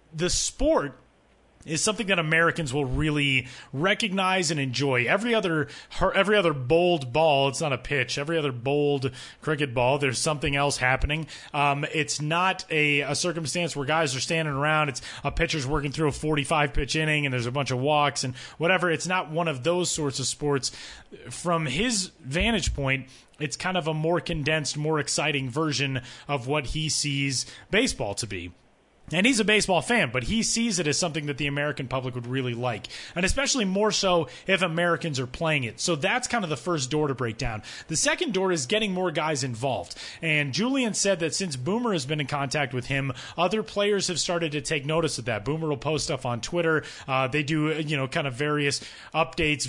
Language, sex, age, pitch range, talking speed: English, male, 30-49, 140-175 Hz, 200 wpm